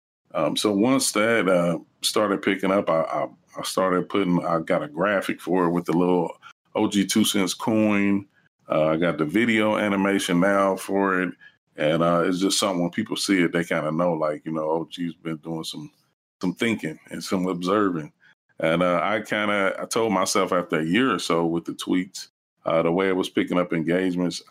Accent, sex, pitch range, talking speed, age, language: American, male, 85-100 Hz, 205 wpm, 30-49, English